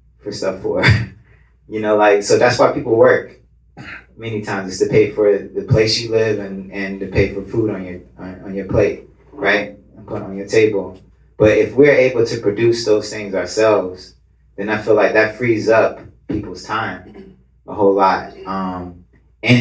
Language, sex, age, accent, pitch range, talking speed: English, male, 30-49, American, 95-110 Hz, 190 wpm